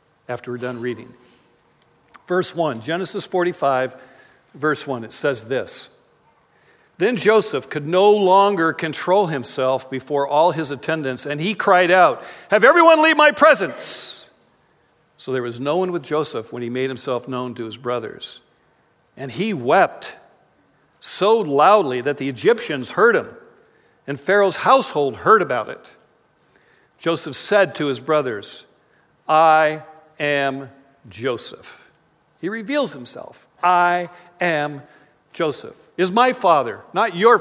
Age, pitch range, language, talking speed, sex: 50-69, 135-185 Hz, English, 135 wpm, male